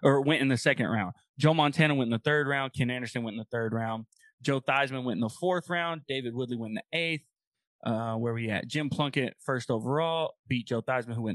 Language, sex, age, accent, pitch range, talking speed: English, male, 20-39, American, 120-155 Hz, 240 wpm